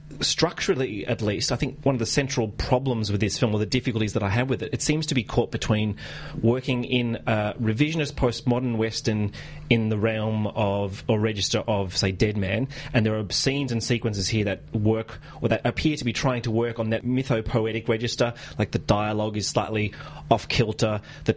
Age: 30-49